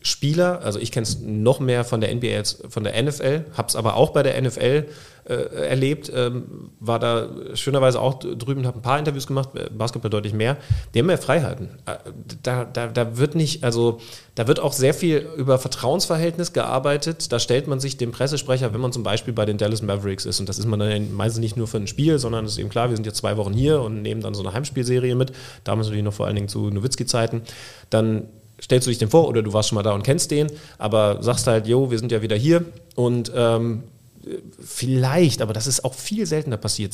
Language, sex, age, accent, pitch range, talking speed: German, male, 30-49, German, 110-135 Hz, 225 wpm